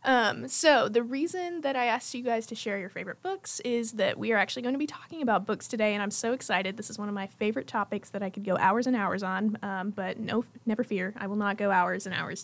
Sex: female